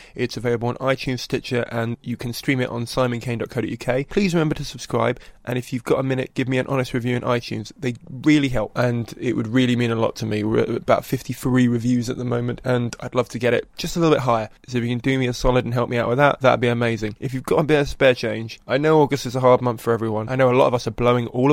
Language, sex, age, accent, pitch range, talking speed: English, male, 20-39, British, 115-130 Hz, 290 wpm